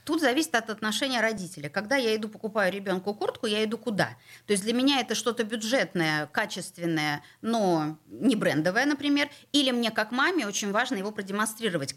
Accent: native